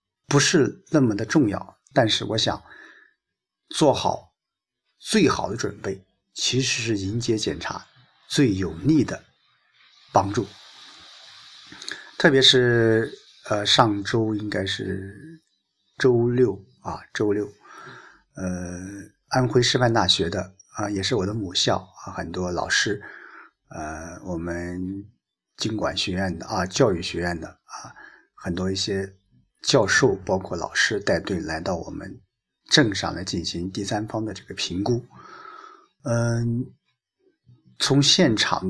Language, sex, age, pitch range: Chinese, male, 50-69, 95-125 Hz